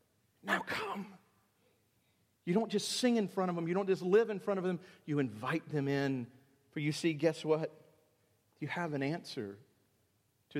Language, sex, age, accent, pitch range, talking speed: English, male, 50-69, American, 110-145 Hz, 180 wpm